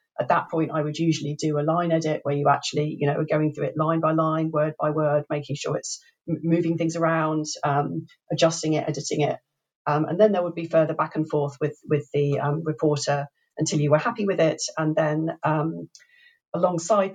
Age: 40-59